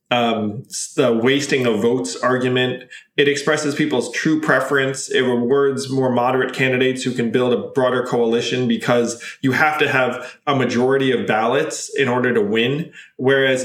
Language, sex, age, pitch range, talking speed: English, male, 20-39, 125-155 Hz, 160 wpm